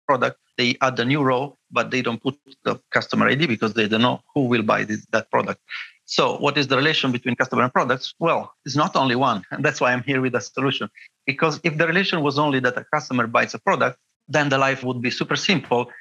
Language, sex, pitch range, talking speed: English, male, 125-145 Hz, 240 wpm